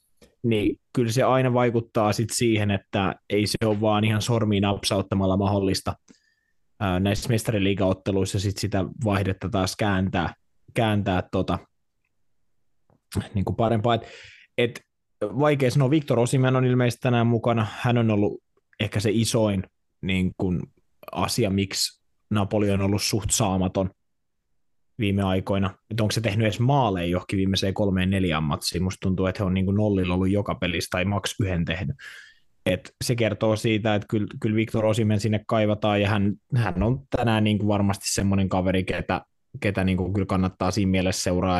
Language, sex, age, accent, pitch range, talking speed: Finnish, male, 20-39, native, 95-115 Hz, 155 wpm